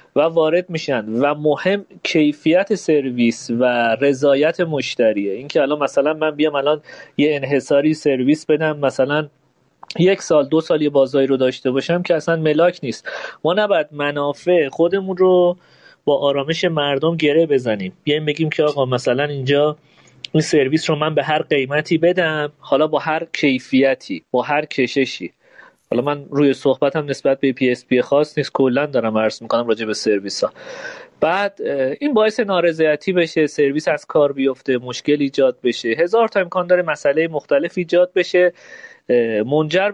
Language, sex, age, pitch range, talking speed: Persian, male, 30-49, 135-170 Hz, 160 wpm